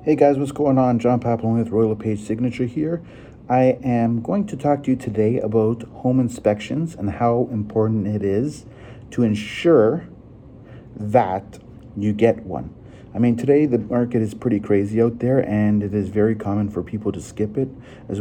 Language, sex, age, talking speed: English, male, 40-59, 180 wpm